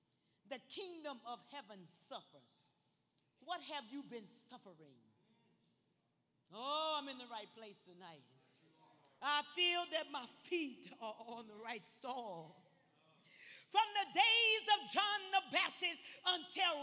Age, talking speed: 40-59, 125 wpm